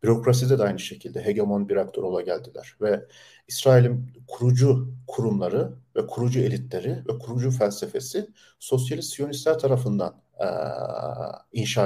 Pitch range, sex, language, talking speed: 120-140 Hz, male, Turkish, 115 wpm